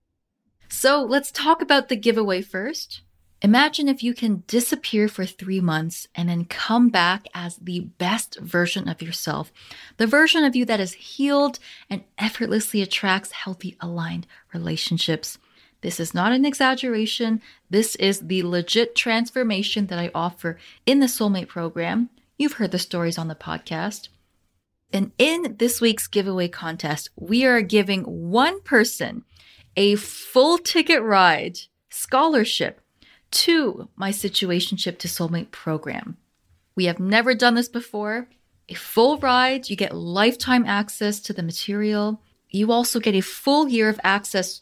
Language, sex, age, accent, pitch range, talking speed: English, female, 20-39, American, 175-240 Hz, 145 wpm